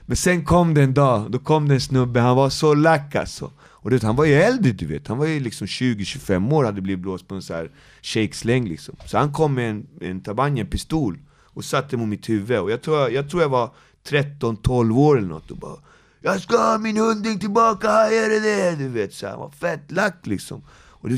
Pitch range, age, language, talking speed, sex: 115-155 Hz, 30-49, Swedish, 235 wpm, male